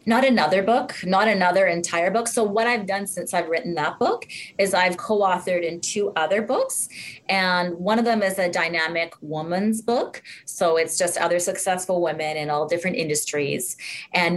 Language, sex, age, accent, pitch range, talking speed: English, female, 30-49, American, 160-195 Hz, 180 wpm